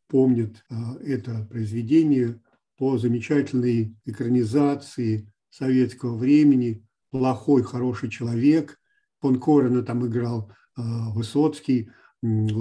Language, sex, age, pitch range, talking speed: Russian, male, 50-69, 125-150 Hz, 70 wpm